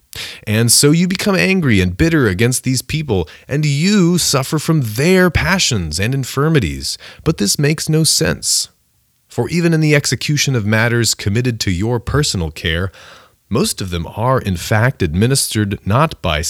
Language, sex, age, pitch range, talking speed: English, male, 30-49, 90-120 Hz, 160 wpm